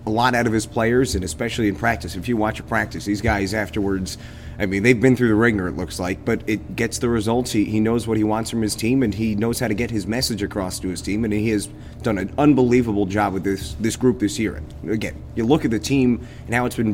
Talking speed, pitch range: 275 wpm, 100-125 Hz